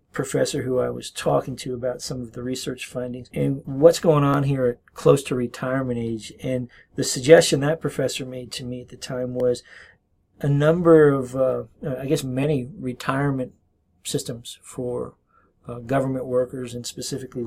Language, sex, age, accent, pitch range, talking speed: English, male, 40-59, American, 125-145 Hz, 170 wpm